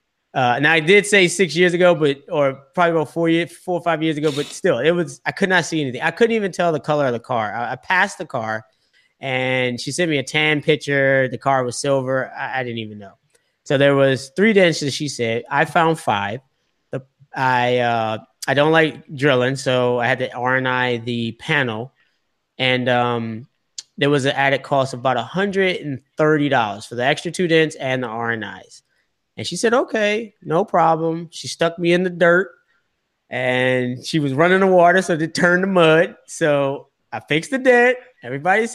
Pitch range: 130-170 Hz